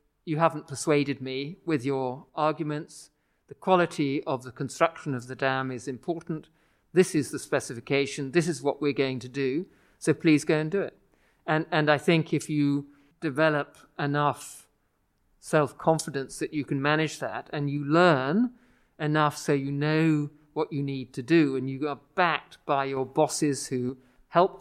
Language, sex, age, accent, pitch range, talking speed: English, male, 50-69, British, 135-155 Hz, 170 wpm